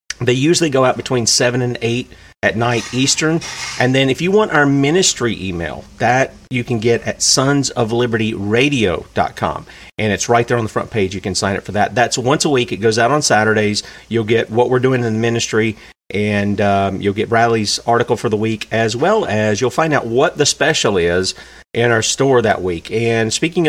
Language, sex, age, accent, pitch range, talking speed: English, male, 40-59, American, 110-135 Hz, 210 wpm